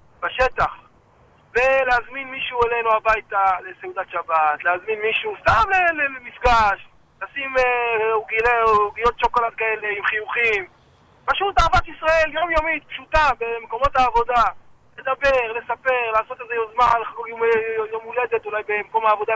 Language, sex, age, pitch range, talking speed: Hebrew, male, 20-39, 220-265 Hz, 115 wpm